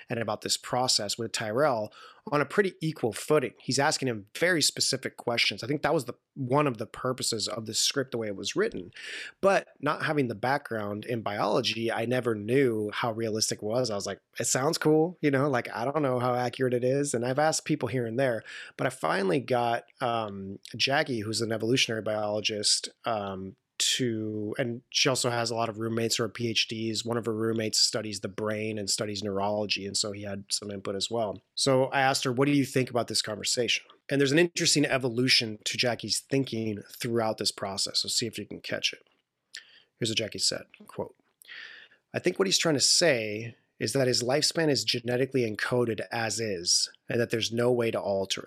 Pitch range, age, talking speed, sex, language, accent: 110-130 Hz, 30-49, 210 wpm, male, English, American